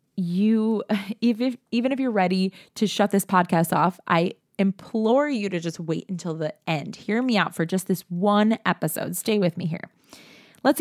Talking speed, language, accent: 180 wpm, English, American